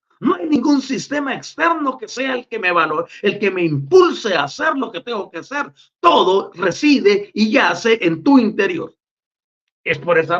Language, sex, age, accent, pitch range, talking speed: Spanish, male, 40-59, Mexican, 170-275 Hz, 185 wpm